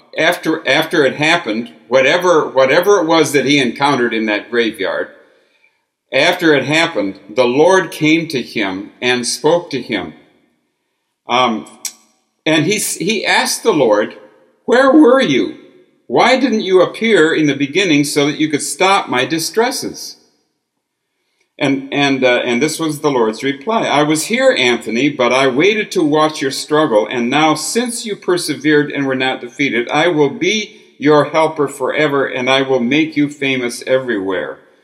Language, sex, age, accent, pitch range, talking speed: English, male, 60-79, American, 130-170 Hz, 160 wpm